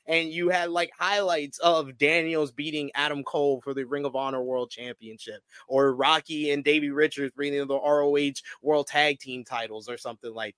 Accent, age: American, 20-39